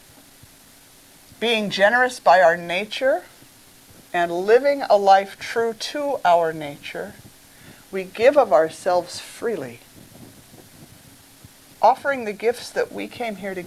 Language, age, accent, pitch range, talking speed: English, 50-69, American, 170-220 Hz, 115 wpm